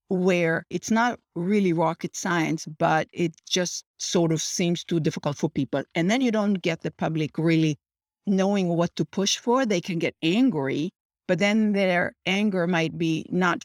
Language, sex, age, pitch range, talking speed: English, female, 50-69, 165-200 Hz, 175 wpm